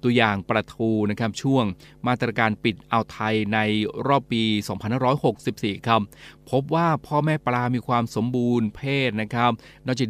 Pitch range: 110-130 Hz